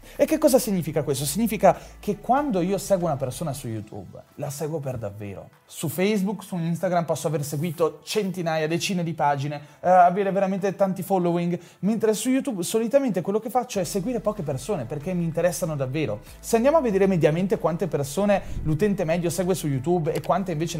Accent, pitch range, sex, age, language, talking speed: native, 140-190 Hz, male, 30-49, Italian, 185 wpm